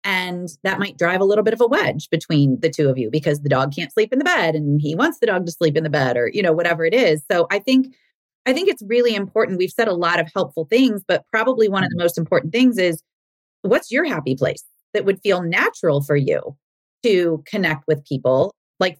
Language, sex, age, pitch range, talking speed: English, female, 30-49, 155-200 Hz, 245 wpm